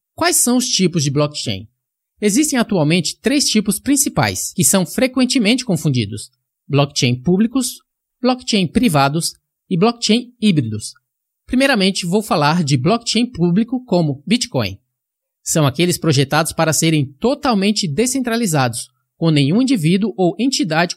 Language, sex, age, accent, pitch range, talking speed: Portuguese, male, 20-39, Brazilian, 150-225 Hz, 120 wpm